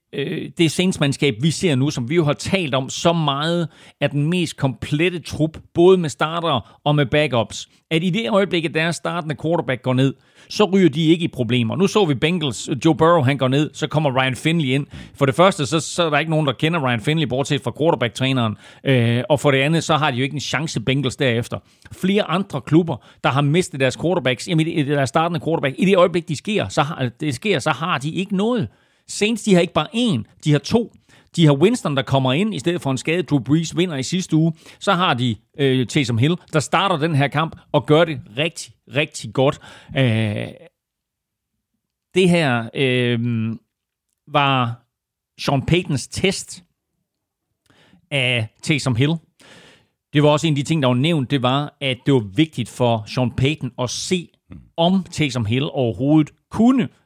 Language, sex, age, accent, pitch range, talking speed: Danish, male, 40-59, native, 130-165 Hz, 190 wpm